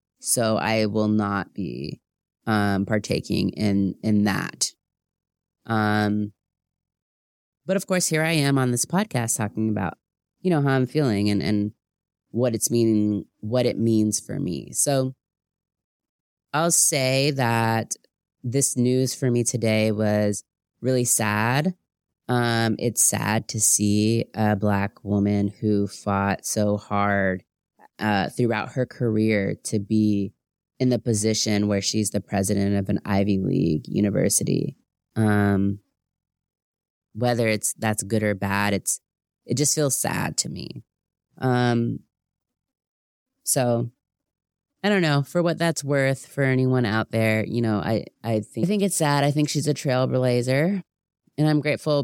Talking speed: 140 wpm